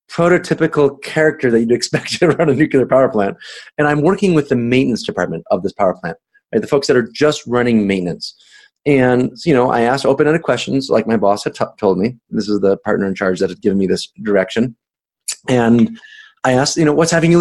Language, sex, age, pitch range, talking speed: English, male, 30-49, 130-185 Hz, 220 wpm